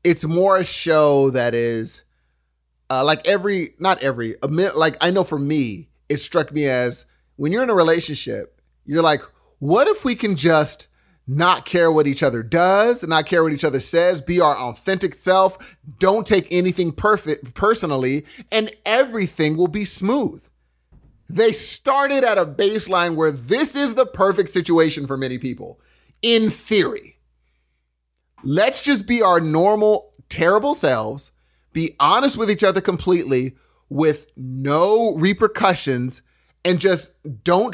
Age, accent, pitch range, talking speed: 30-49, American, 135-195 Hz, 150 wpm